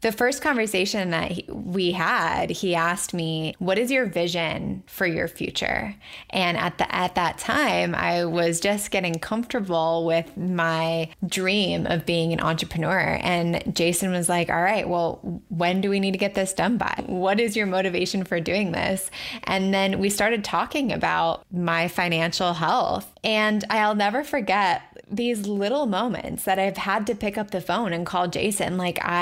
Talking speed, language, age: 175 wpm, English, 20-39